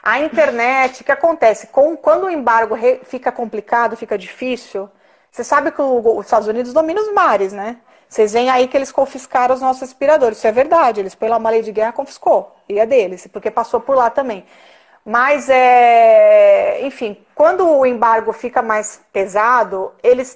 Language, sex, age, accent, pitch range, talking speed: Portuguese, female, 30-49, Brazilian, 220-275 Hz, 185 wpm